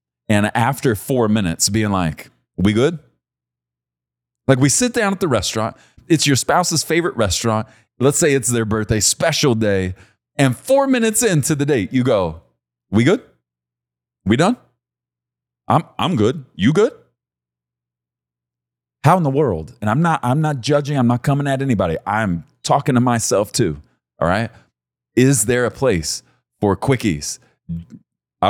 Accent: American